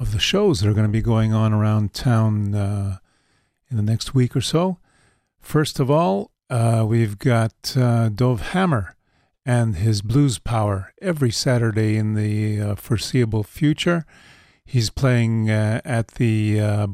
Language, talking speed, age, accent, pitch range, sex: English, 160 wpm, 40-59, American, 105-125 Hz, male